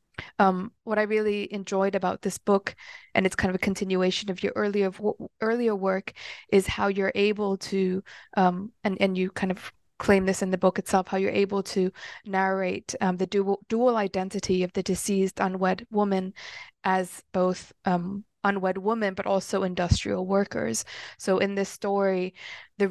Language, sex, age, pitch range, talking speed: English, female, 20-39, 185-205 Hz, 170 wpm